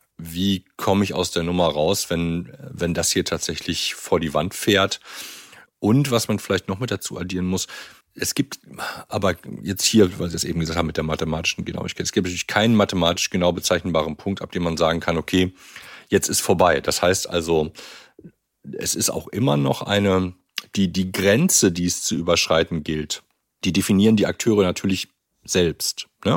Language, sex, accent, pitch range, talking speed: German, male, German, 80-95 Hz, 185 wpm